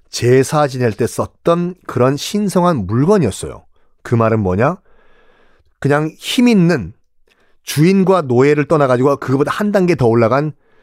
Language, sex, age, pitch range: Korean, male, 40-59, 120-175 Hz